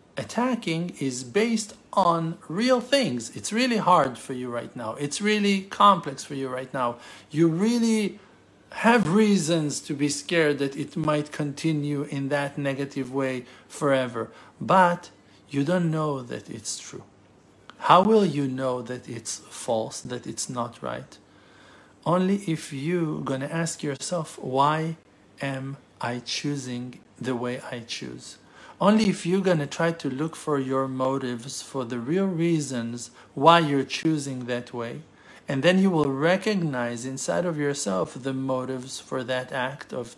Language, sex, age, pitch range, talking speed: English, male, 50-69, 130-165 Hz, 155 wpm